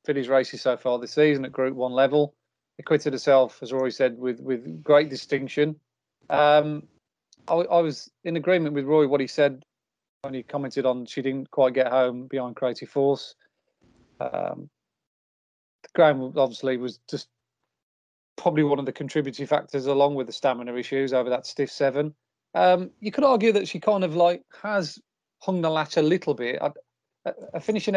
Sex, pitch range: male, 130-155 Hz